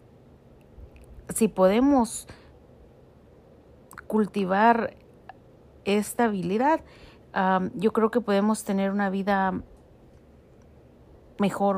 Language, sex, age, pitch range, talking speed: Spanish, female, 40-59, 190-230 Hz, 70 wpm